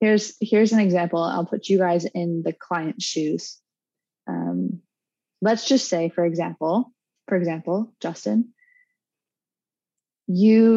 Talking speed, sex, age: 125 wpm, female, 20-39